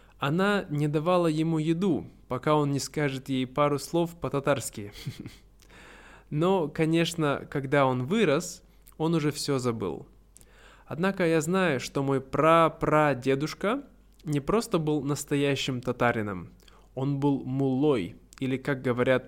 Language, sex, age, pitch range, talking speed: Russian, male, 20-39, 130-165 Hz, 125 wpm